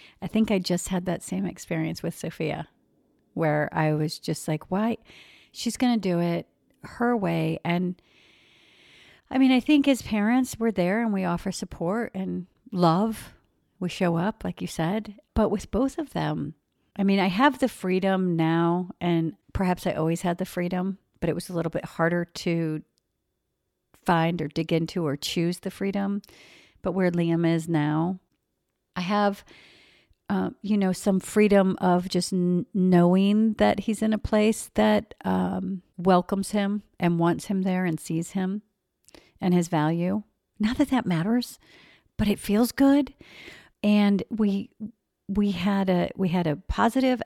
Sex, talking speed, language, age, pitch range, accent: female, 165 wpm, English, 50-69, 170-215 Hz, American